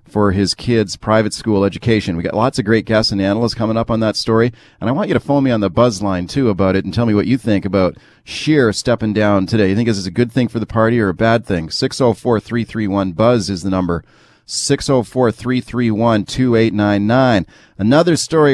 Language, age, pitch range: English, 40-59, 115-145 Hz